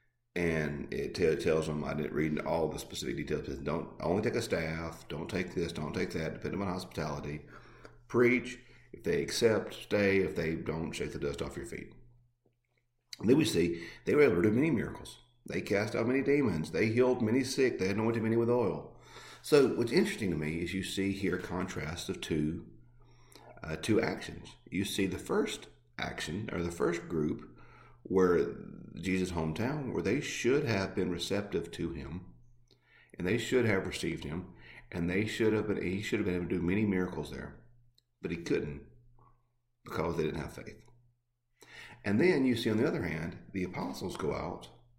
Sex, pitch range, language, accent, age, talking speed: male, 85-120 Hz, English, American, 50-69, 190 wpm